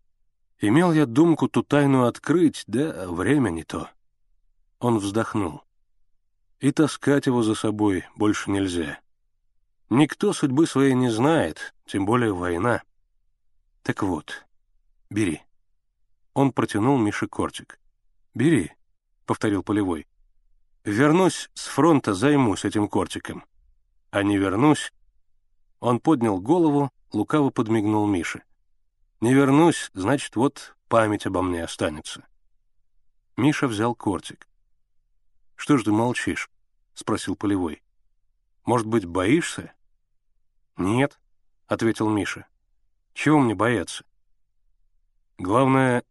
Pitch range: 100-125 Hz